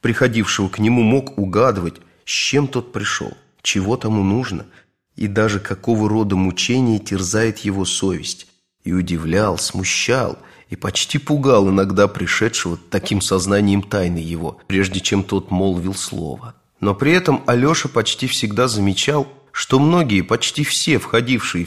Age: 30-49